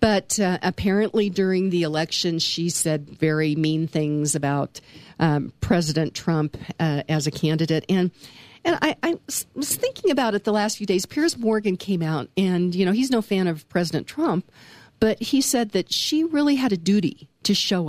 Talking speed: 185 wpm